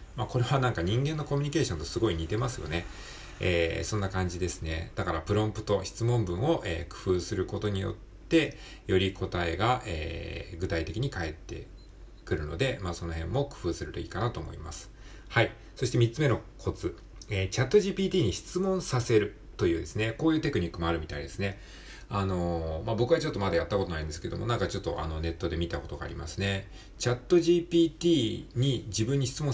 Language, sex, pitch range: Japanese, male, 85-120 Hz